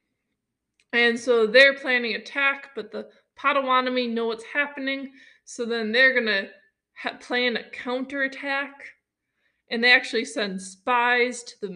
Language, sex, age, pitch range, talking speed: English, female, 20-39, 210-255 Hz, 135 wpm